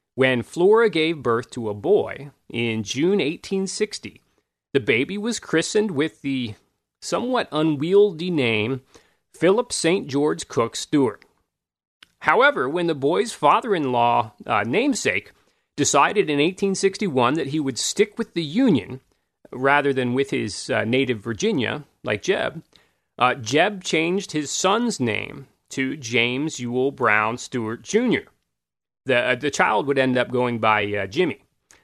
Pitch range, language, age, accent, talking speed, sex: 120-165 Hz, English, 30-49, American, 135 wpm, male